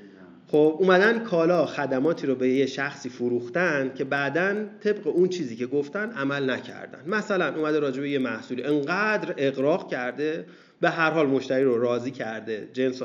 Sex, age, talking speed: male, 30-49, 155 wpm